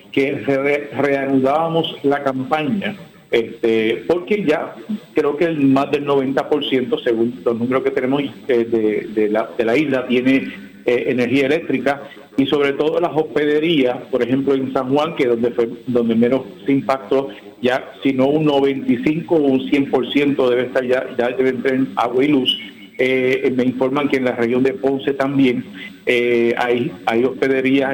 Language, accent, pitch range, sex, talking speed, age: Spanish, Venezuelan, 125-155 Hz, male, 165 wpm, 50-69